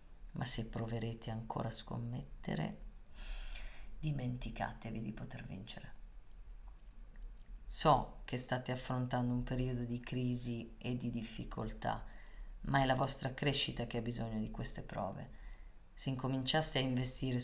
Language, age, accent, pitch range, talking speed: Italian, 30-49, native, 115-145 Hz, 125 wpm